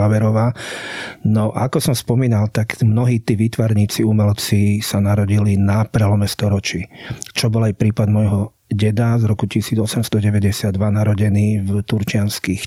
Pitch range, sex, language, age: 105-115 Hz, male, Slovak, 40-59